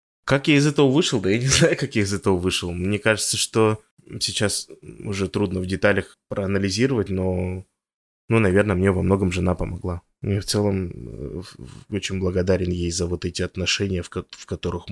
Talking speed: 175 wpm